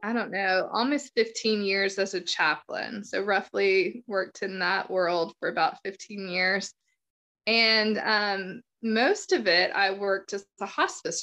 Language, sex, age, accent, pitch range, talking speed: English, female, 20-39, American, 190-230 Hz, 155 wpm